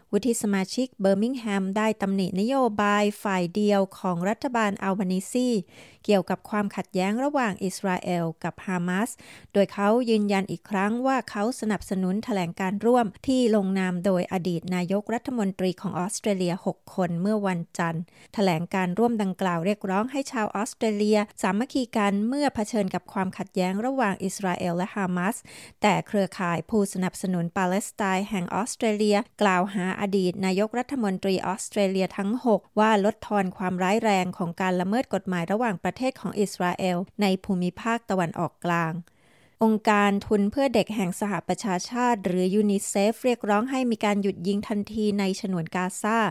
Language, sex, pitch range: Thai, female, 185-220 Hz